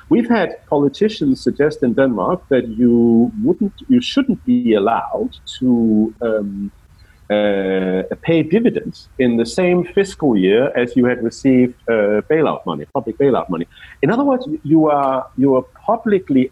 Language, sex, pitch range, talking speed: Finnish, male, 110-185 Hz, 150 wpm